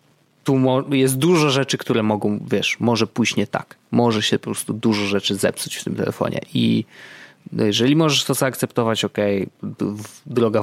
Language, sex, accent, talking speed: Polish, male, native, 160 wpm